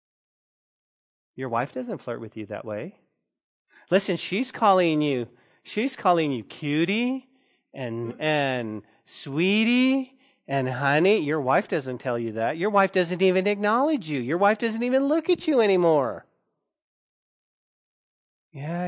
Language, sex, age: English, male, 40-59